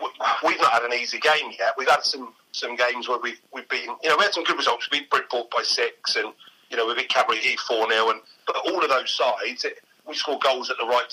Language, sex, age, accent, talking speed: English, male, 30-49, British, 265 wpm